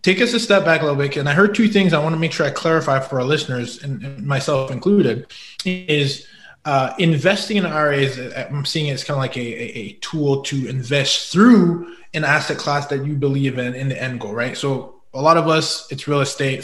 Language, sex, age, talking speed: English, male, 20-39, 225 wpm